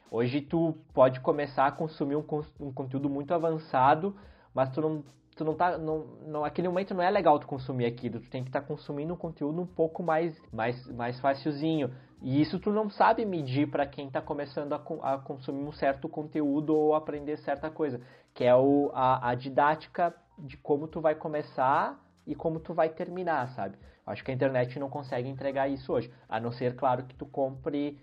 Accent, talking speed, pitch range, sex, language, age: Brazilian, 200 wpm, 130-165 Hz, male, Portuguese, 20-39